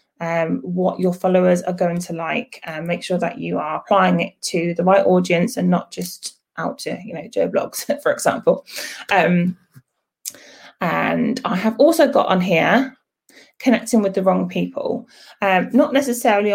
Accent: British